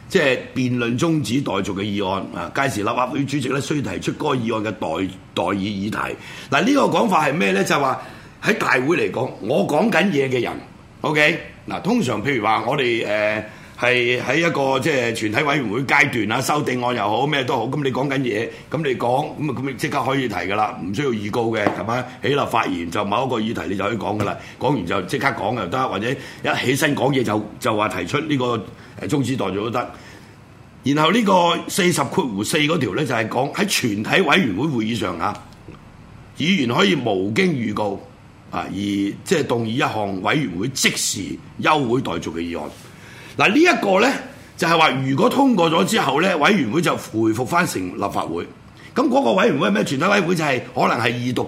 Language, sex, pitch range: Chinese, male, 105-140 Hz